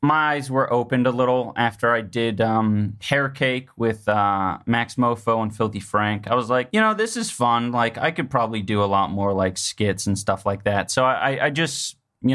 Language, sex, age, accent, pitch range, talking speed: English, male, 20-39, American, 105-130 Hz, 225 wpm